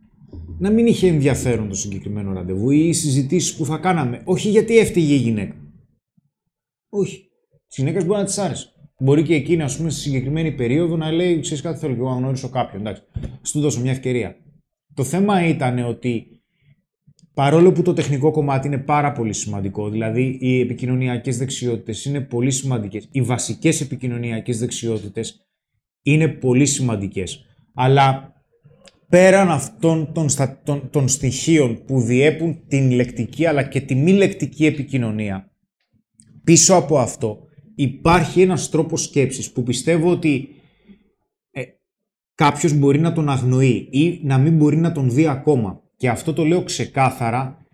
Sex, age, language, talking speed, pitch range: male, 20-39, Greek, 145 wpm, 125-160 Hz